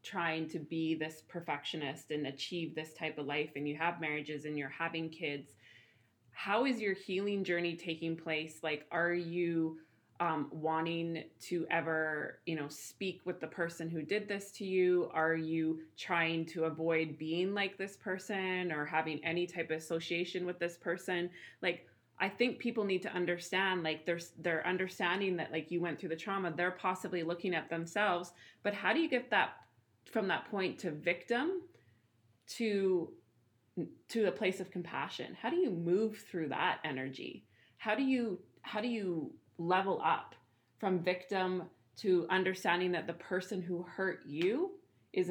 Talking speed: 170 wpm